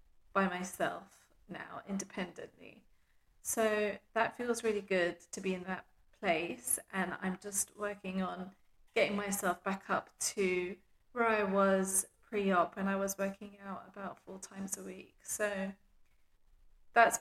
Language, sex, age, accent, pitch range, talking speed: English, female, 30-49, British, 185-210 Hz, 140 wpm